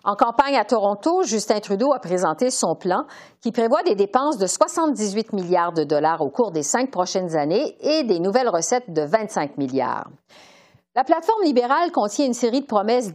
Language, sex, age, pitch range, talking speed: French, female, 50-69, 175-250 Hz, 185 wpm